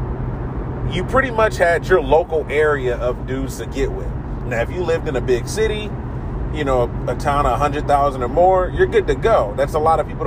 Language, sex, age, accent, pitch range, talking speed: English, male, 30-49, American, 120-150 Hz, 215 wpm